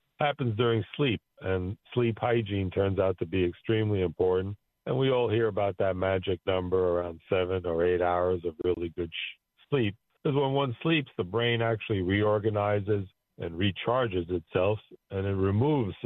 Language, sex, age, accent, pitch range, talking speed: English, male, 50-69, American, 90-110 Hz, 160 wpm